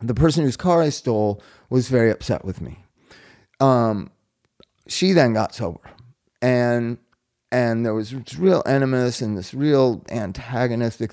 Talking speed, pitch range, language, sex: 145 wpm, 110-140 Hz, English, male